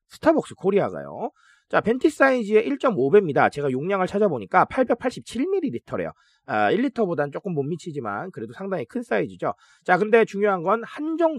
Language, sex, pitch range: Korean, male, 185-290 Hz